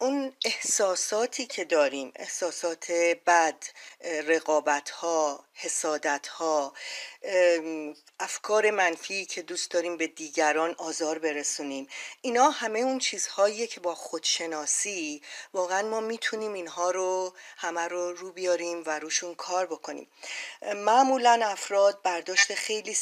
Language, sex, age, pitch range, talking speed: Persian, female, 40-59, 165-210 Hz, 105 wpm